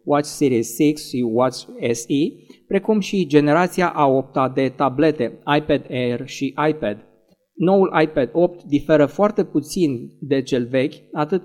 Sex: male